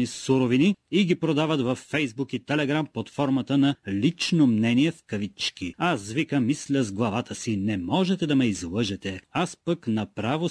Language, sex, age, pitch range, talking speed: Bulgarian, male, 30-49, 120-150 Hz, 165 wpm